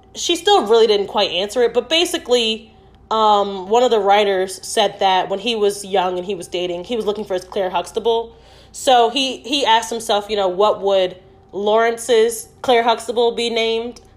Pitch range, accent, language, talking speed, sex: 190-265 Hz, American, English, 190 wpm, female